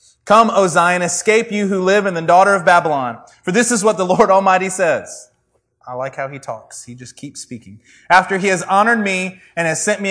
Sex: male